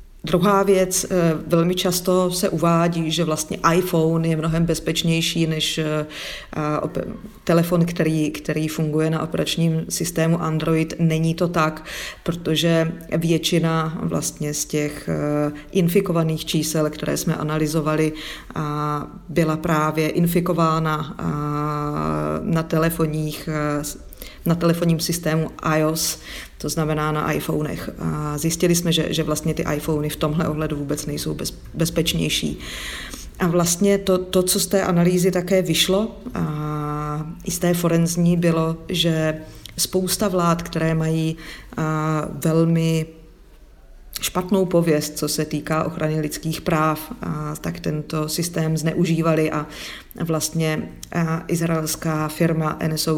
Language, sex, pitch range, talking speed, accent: Czech, female, 155-170 Hz, 110 wpm, native